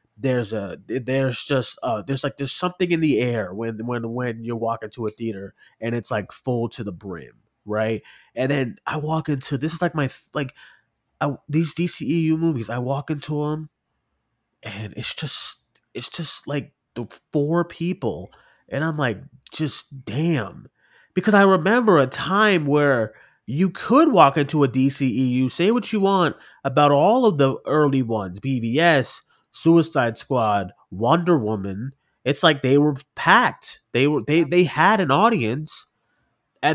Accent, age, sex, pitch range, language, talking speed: American, 20-39, male, 105-145 Hz, English, 165 wpm